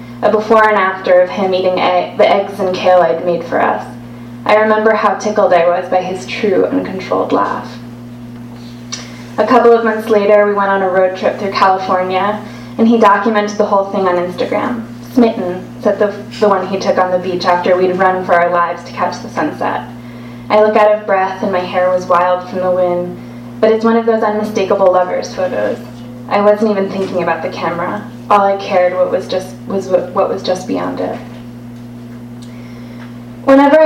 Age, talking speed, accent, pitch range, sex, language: 20-39, 195 wpm, American, 170-210 Hz, female, English